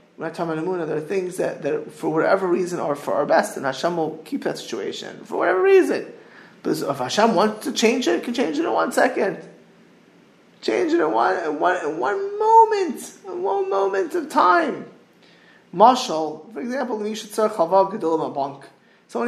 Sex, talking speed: male, 180 wpm